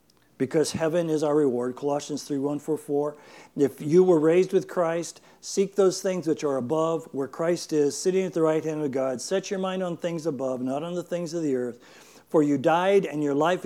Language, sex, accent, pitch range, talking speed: English, male, American, 145-180 Hz, 225 wpm